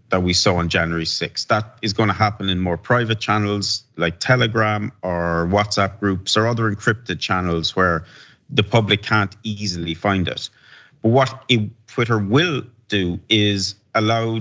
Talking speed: 160 wpm